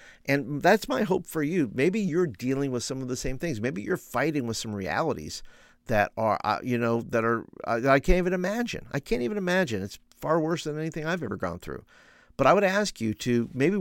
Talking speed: 220 wpm